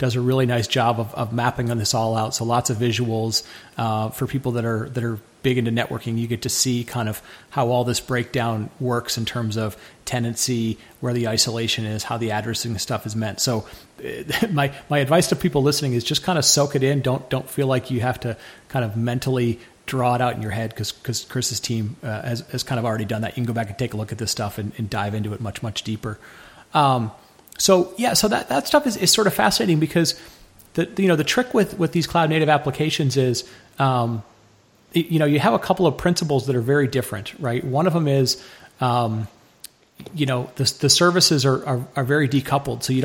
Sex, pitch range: male, 115-140 Hz